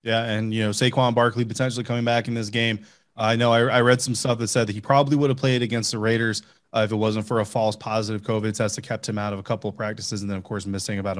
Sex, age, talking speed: male, 20-39, 300 wpm